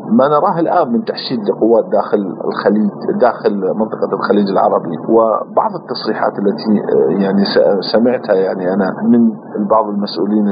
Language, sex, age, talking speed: Arabic, male, 40-59, 125 wpm